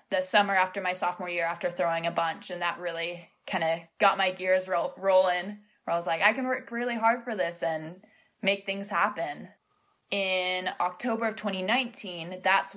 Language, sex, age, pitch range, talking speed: English, female, 20-39, 165-205 Hz, 185 wpm